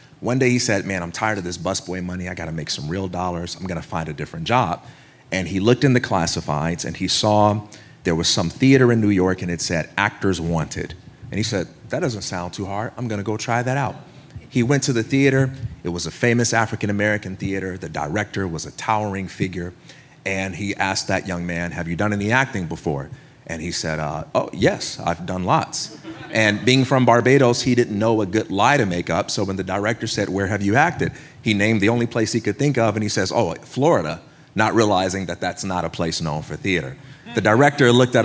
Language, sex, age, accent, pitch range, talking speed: English, male, 30-49, American, 90-120 Hz, 230 wpm